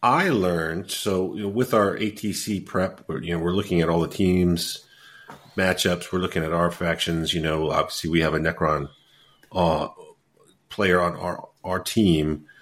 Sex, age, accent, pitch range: male, 40-59, American, 80-100 Hz